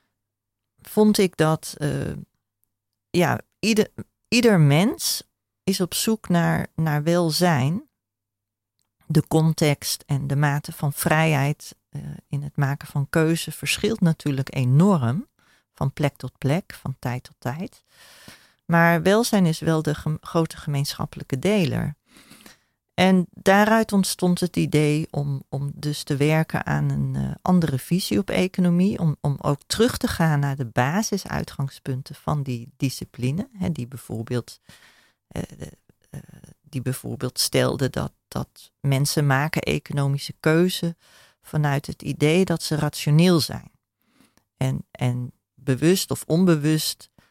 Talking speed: 125 wpm